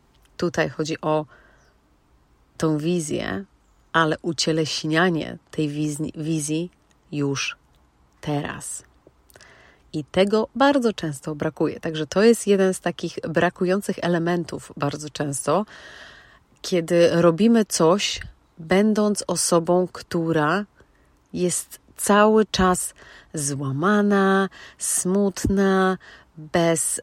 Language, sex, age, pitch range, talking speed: Polish, female, 30-49, 150-185 Hz, 85 wpm